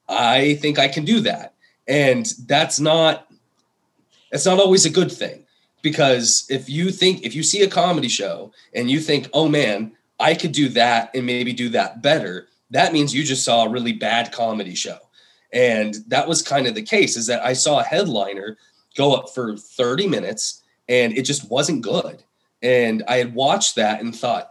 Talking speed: 195 wpm